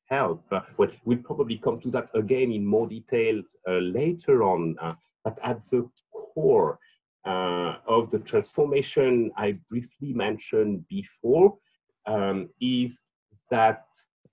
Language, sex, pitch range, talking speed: Swedish, male, 115-175 Hz, 125 wpm